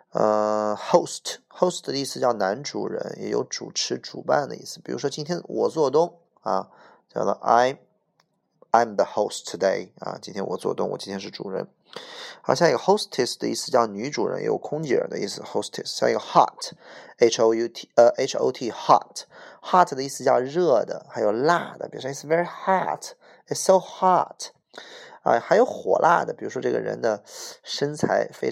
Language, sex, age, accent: Chinese, male, 20-39, native